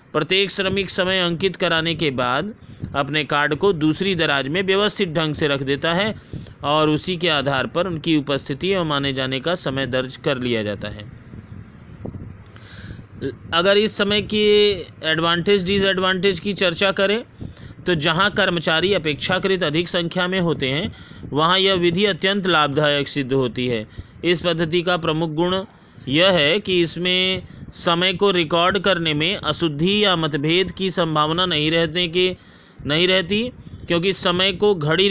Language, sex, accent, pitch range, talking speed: Hindi, male, native, 145-190 Hz, 155 wpm